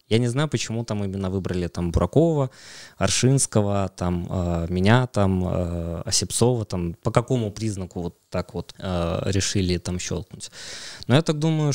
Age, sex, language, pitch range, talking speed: 20-39, male, Russian, 95-120 Hz, 130 wpm